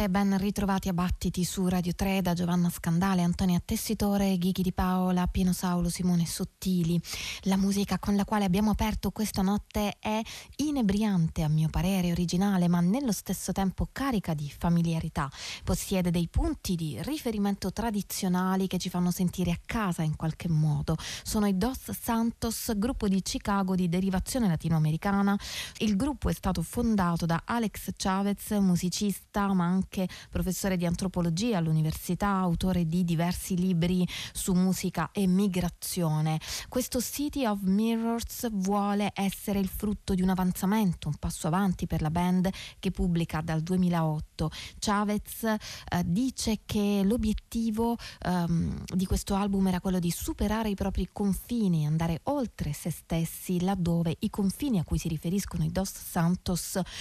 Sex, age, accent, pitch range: female, 20-39, native, 175-205 Hz